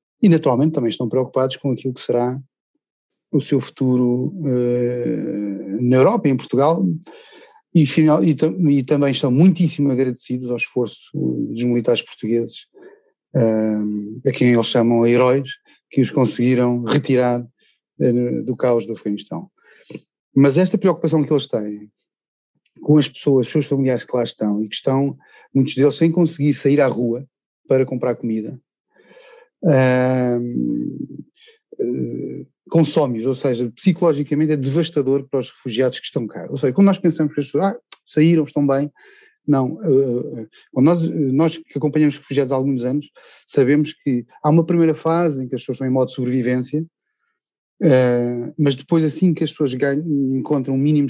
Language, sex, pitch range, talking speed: Portuguese, male, 125-155 Hz, 160 wpm